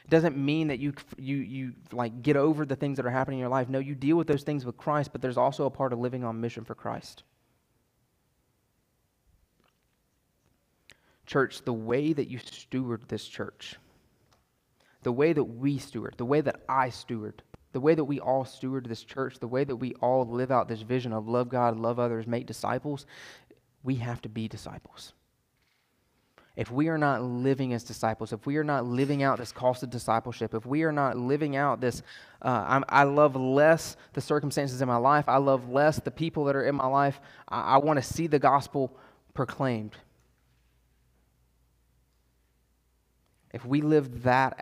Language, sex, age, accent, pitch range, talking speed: English, male, 20-39, American, 120-140 Hz, 185 wpm